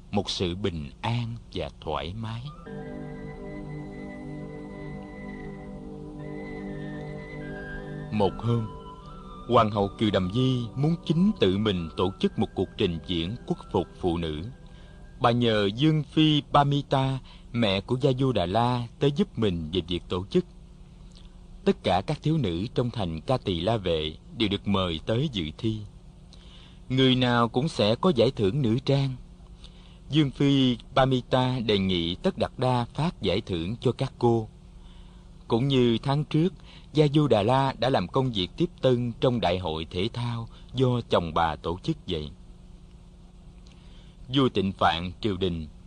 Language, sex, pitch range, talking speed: Vietnamese, male, 95-140 Hz, 155 wpm